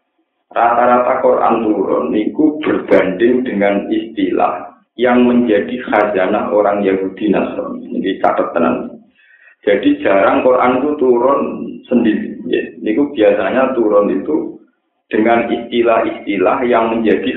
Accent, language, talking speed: native, Indonesian, 100 wpm